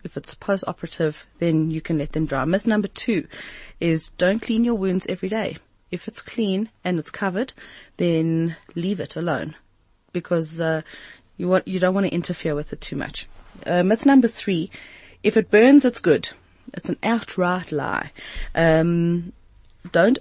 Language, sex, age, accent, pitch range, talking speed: English, female, 30-49, South African, 160-190 Hz, 170 wpm